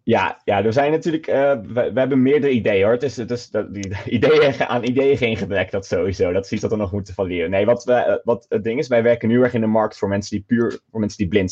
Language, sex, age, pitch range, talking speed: Dutch, male, 20-39, 100-120 Hz, 275 wpm